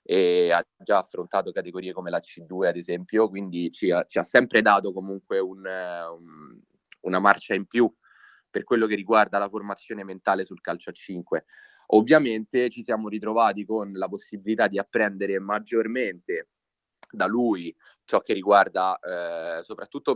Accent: native